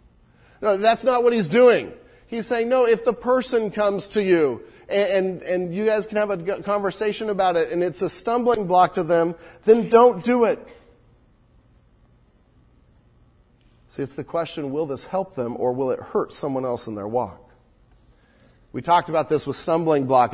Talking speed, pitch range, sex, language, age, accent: 180 wpm, 145-210 Hz, male, English, 40-59, American